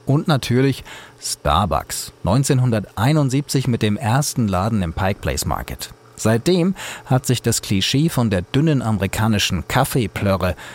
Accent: German